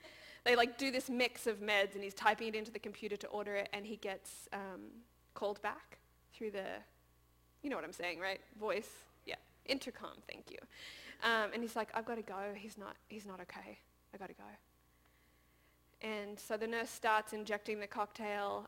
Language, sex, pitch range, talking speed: English, female, 205-270 Hz, 195 wpm